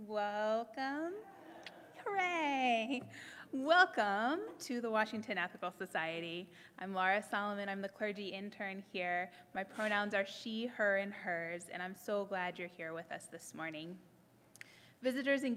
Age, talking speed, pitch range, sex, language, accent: 20-39, 135 wpm, 185-235 Hz, female, English, American